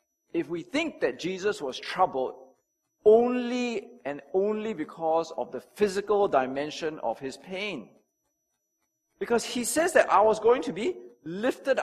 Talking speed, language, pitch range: 140 wpm, English, 155-250 Hz